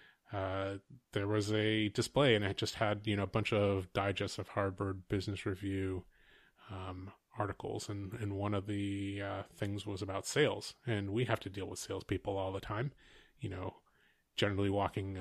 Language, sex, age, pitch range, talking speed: English, male, 30-49, 100-110 Hz, 180 wpm